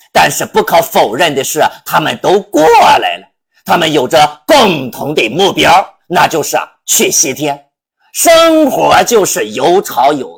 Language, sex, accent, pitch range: Chinese, male, native, 205-310 Hz